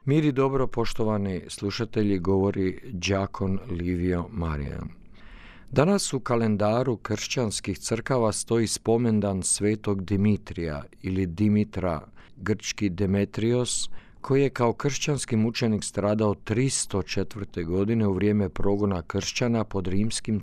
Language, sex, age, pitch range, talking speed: Croatian, male, 50-69, 95-115 Hz, 105 wpm